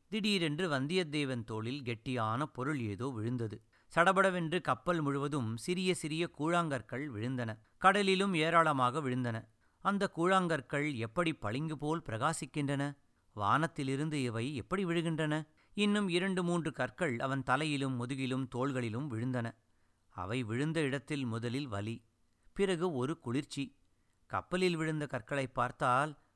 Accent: native